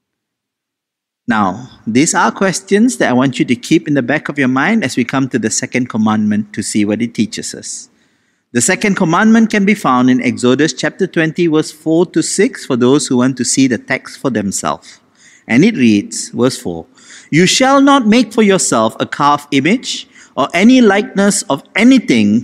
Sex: male